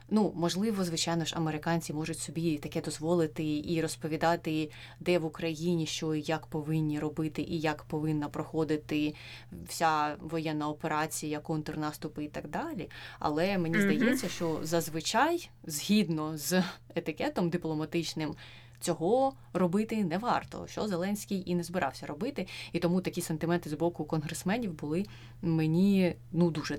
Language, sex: Ukrainian, female